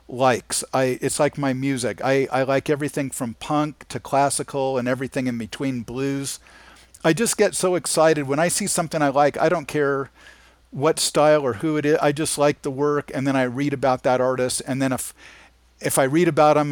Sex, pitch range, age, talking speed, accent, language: male, 125-145 Hz, 50-69, 210 wpm, American, English